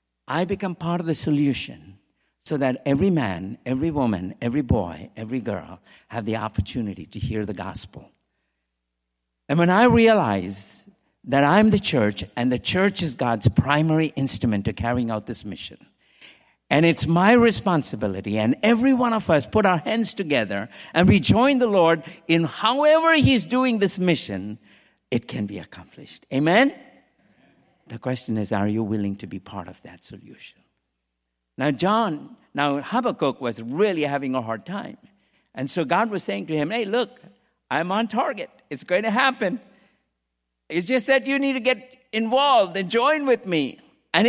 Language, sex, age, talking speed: English, male, 60-79, 165 wpm